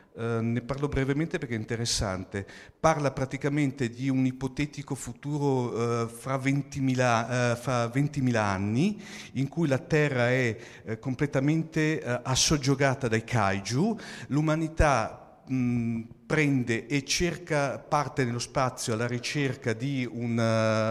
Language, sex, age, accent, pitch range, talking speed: Italian, male, 50-69, native, 120-145 Hz, 125 wpm